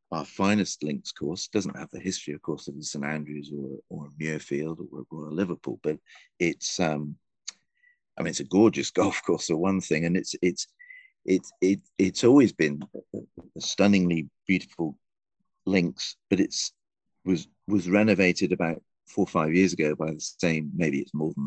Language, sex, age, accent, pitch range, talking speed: English, male, 40-59, British, 80-95 Hz, 175 wpm